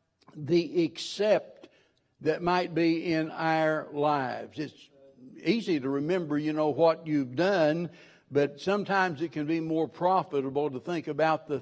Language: English